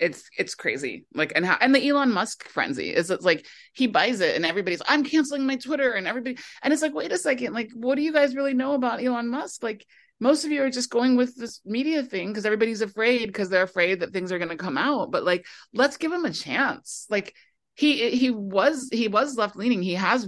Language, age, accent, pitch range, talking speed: English, 30-49, American, 180-275 Hz, 235 wpm